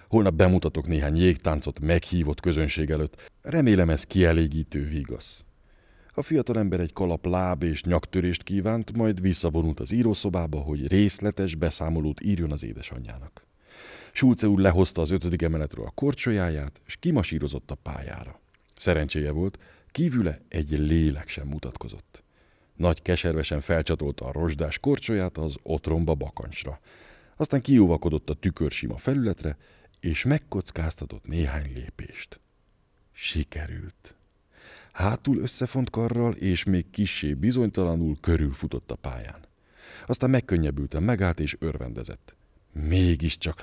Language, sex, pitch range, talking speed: Hungarian, male, 75-100 Hz, 115 wpm